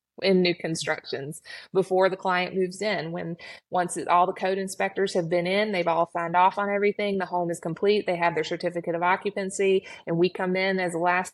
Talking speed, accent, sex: 215 wpm, American, female